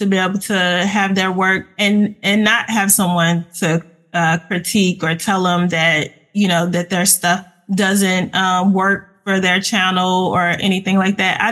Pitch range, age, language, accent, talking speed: 190-220 Hz, 20-39, English, American, 180 wpm